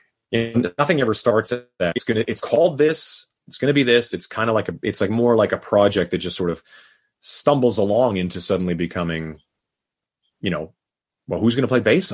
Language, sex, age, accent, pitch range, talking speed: English, male, 30-49, American, 90-120 Hz, 220 wpm